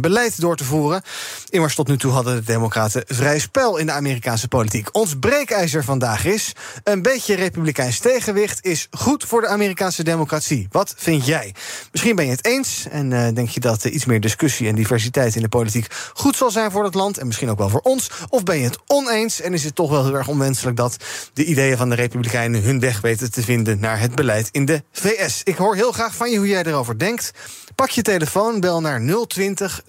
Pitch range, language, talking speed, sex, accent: 125-190 Hz, Dutch, 220 wpm, male, Dutch